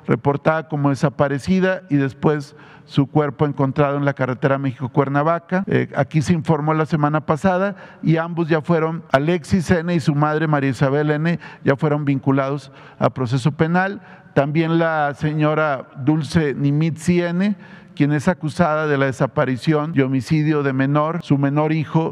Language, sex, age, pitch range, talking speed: Spanish, male, 50-69, 140-170 Hz, 150 wpm